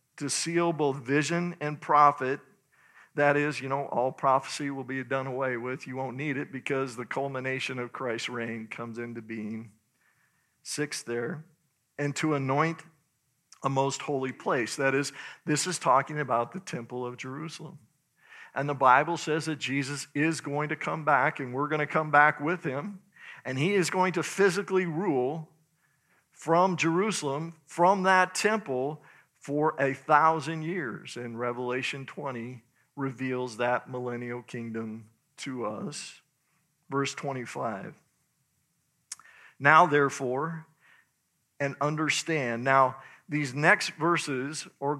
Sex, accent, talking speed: male, American, 140 wpm